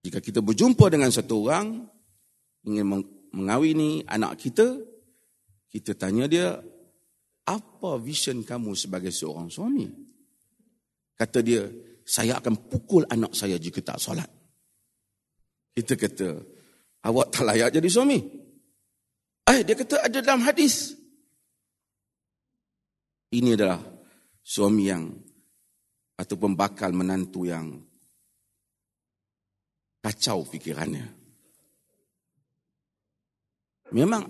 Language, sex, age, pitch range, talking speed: Malay, male, 40-59, 100-120 Hz, 95 wpm